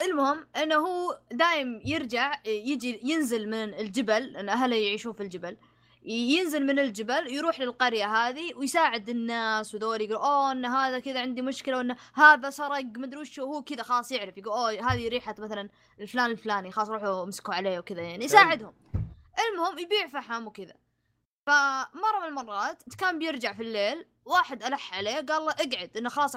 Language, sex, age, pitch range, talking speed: Arabic, female, 20-39, 210-290 Hz, 170 wpm